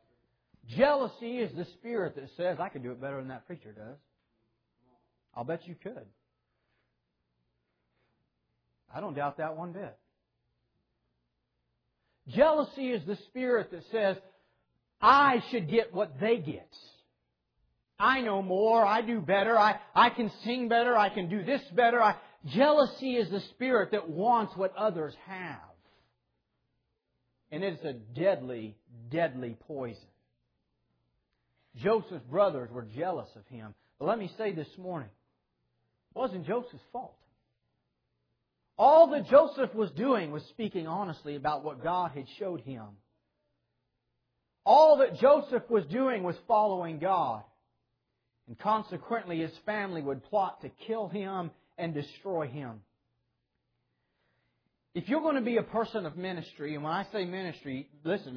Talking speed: 135 wpm